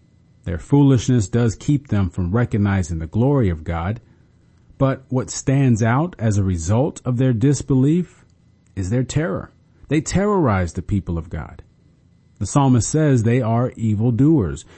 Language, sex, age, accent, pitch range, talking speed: English, male, 40-59, American, 95-130 Hz, 145 wpm